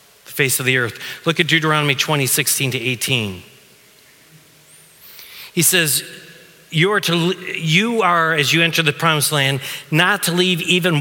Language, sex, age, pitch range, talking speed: English, male, 40-59, 140-220 Hz, 140 wpm